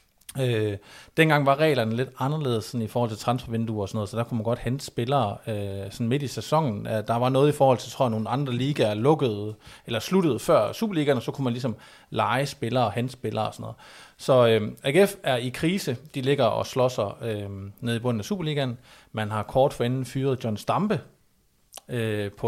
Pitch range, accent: 115-135 Hz, native